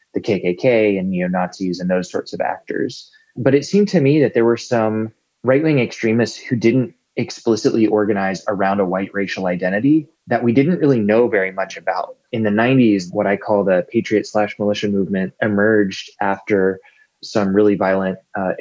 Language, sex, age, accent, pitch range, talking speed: English, male, 20-39, American, 95-120 Hz, 175 wpm